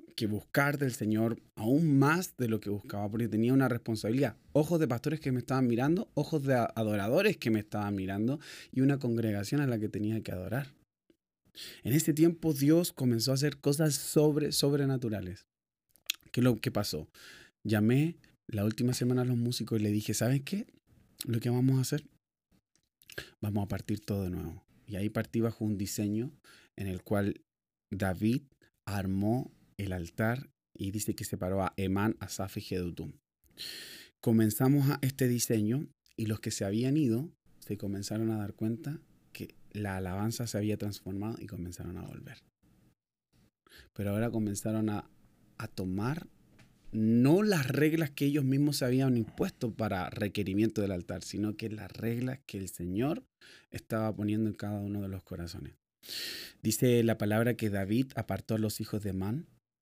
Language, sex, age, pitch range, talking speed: Spanish, male, 30-49, 105-130 Hz, 165 wpm